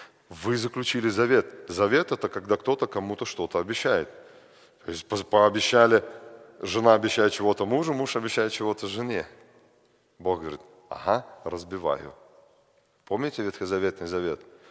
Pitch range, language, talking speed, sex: 110-150 Hz, Russian, 115 wpm, male